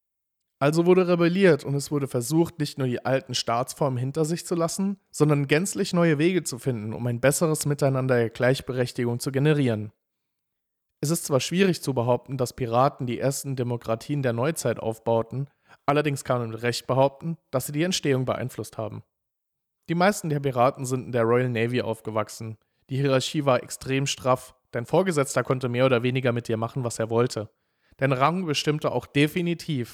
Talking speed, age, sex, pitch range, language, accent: 180 wpm, 40-59, male, 120-150 Hz, English, German